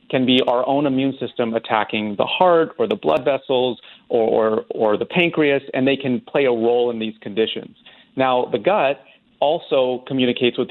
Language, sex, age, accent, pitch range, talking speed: English, male, 40-59, American, 115-135 Hz, 180 wpm